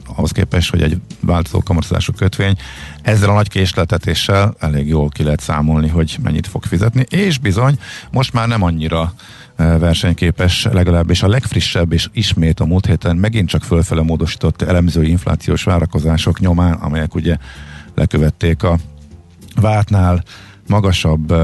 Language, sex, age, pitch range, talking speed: Hungarian, male, 50-69, 80-100 Hz, 135 wpm